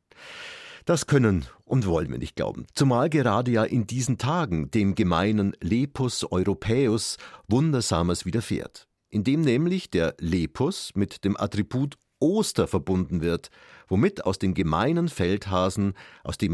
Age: 50-69